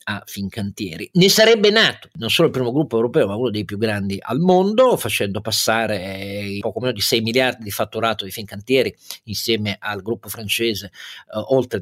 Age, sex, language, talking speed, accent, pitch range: 40-59, male, Italian, 180 wpm, native, 105-135 Hz